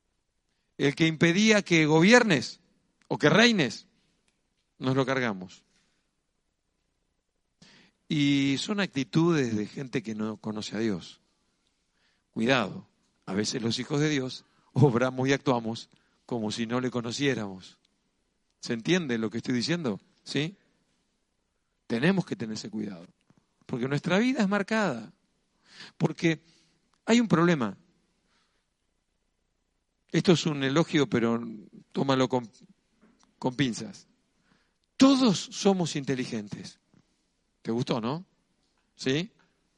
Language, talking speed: Spanish, 110 wpm